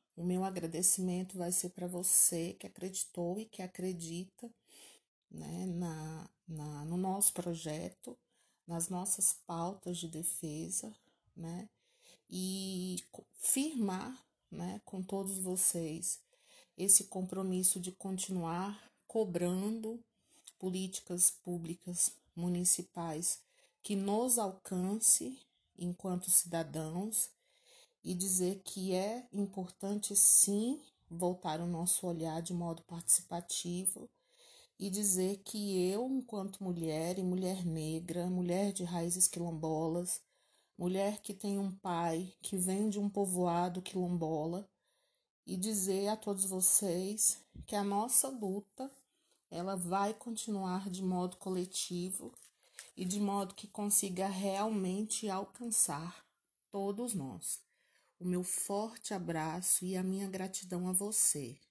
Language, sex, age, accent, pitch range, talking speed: Portuguese, female, 30-49, Brazilian, 175-205 Hz, 110 wpm